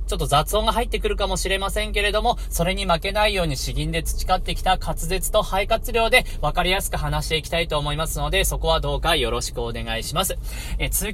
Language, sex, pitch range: Japanese, male, 150-205 Hz